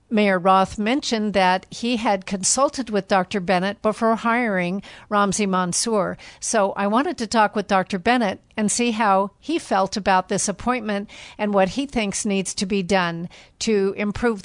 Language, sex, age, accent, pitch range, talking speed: English, female, 50-69, American, 190-225 Hz, 165 wpm